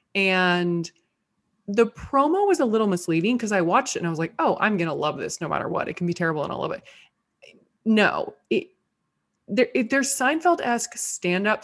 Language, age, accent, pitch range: English, 20-39, American, 170-225 Hz